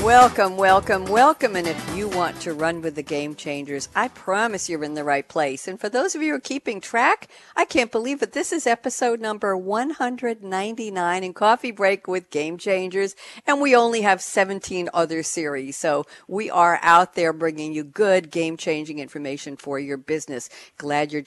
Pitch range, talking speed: 155-230 Hz, 185 wpm